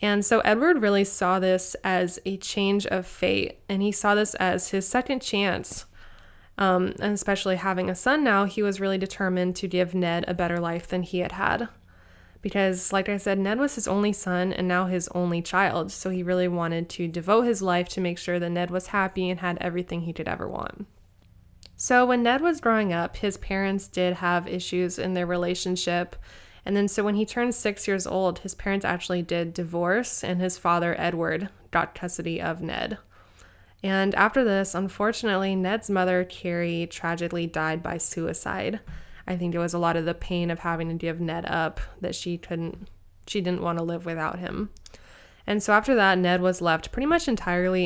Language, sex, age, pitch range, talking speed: English, female, 20-39, 170-200 Hz, 200 wpm